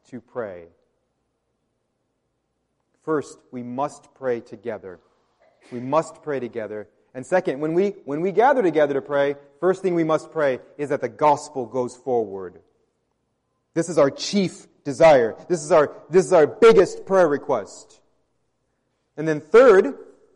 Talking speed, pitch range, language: 145 wpm, 155-200 Hz, English